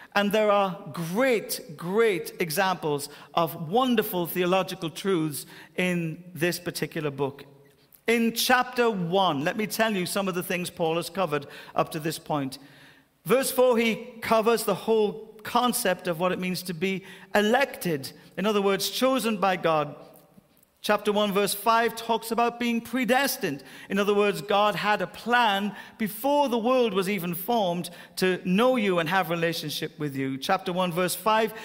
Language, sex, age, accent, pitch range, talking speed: English, male, 50-69, British, 170-220 Hz, 160 wpm